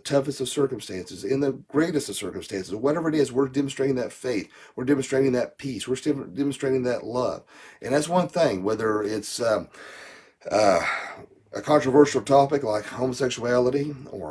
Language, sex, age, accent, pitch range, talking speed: English, male, 40-59, American, 115-145 Hz, 155 wpm